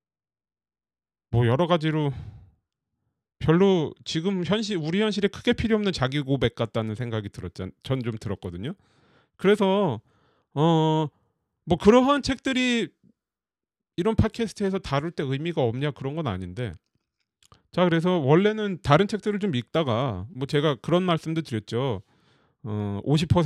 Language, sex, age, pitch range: Korean, male, 30-49, 120-180 Hz